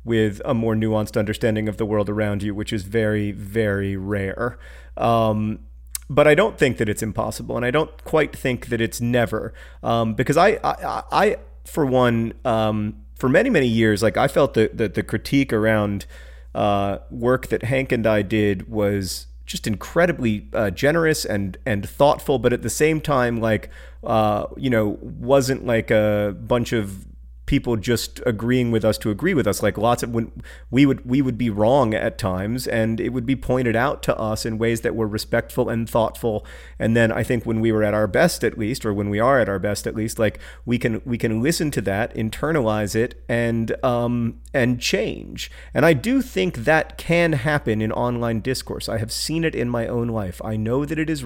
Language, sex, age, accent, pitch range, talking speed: English, male, 30-49, American, 105-125 Hz, 205 wpm